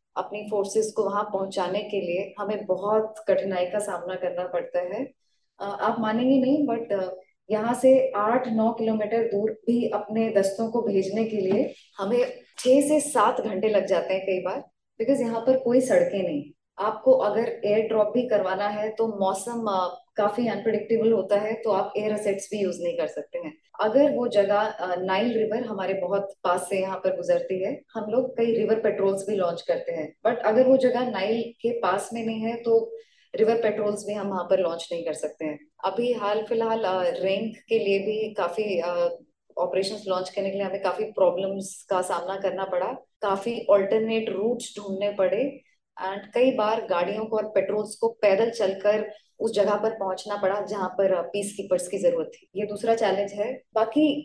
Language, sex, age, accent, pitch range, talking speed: Hindi, female, 20-39, native, 195-230 Hz, 185 wpm